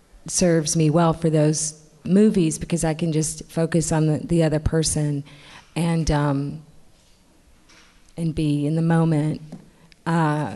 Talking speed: 135 wpm